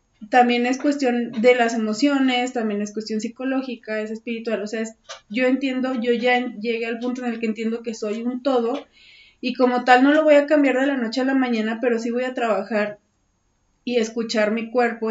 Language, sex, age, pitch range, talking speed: Spanish, female, 20-39, 210-250 Hz, 205 wpm